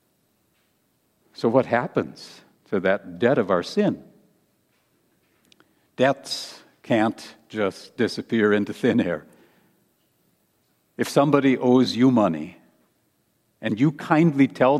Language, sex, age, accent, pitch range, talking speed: English, male, 60-79, American, 115-150 Hz, 100 wpm